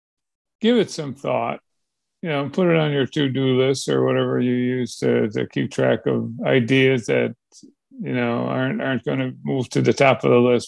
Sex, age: male, 50-69